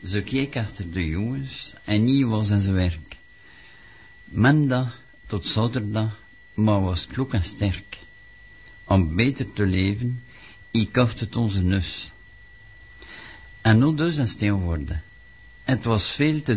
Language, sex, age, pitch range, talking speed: French, male, 60-79, 95-120 Hz, 140 wpm